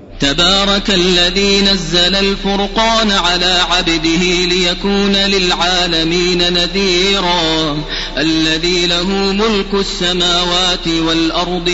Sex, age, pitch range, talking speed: male, 30-49, 160-195 Hz, 70 wpm